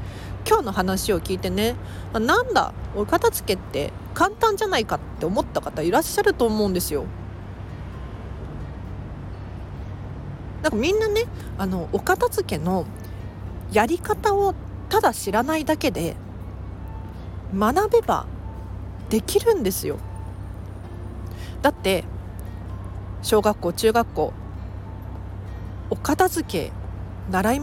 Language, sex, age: Japanese, female, 40-59